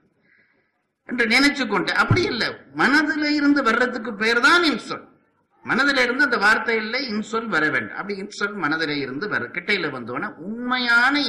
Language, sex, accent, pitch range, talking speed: Tamil, male, native, 125-190 Hz, 130 wpm